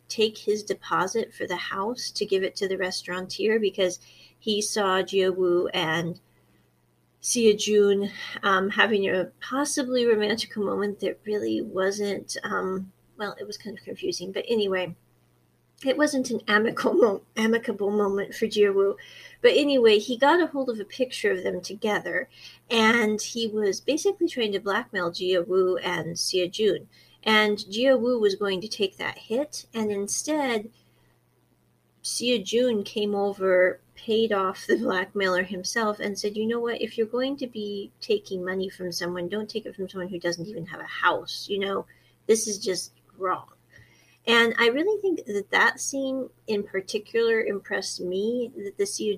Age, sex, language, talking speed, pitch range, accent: 40-59, female, English, 160 wpm, 190-235 Hz, American